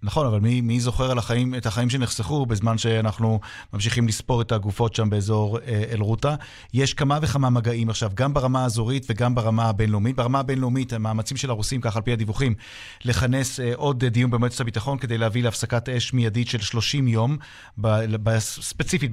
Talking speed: 165 wpm